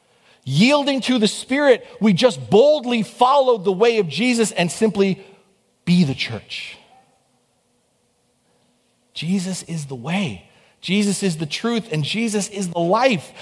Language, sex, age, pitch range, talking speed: English, male, 40-59, 180-245 Hz, 135 wpm